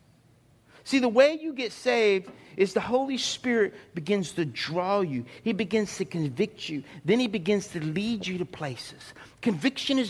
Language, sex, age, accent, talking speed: English, male, 50-69, American, 170 wpm